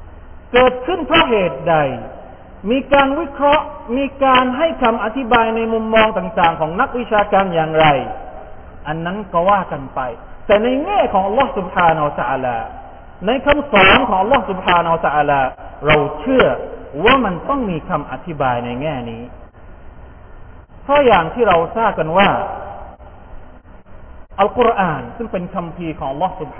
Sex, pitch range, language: male, 155-245 Hz, Thai